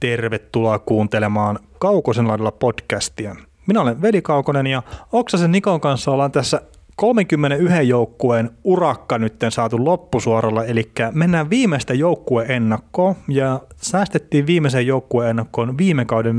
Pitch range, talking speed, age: 110-145 Hz, 115 wpm, 30-49